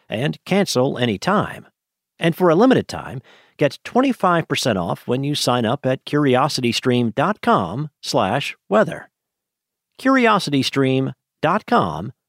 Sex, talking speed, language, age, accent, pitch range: male, 100 wpm, English, 50-69, American, 125-180 Hz